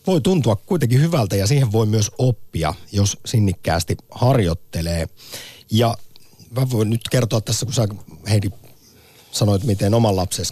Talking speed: 145 wpm